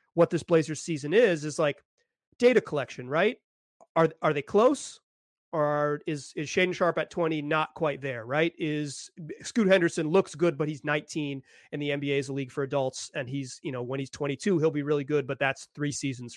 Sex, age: male, 30-49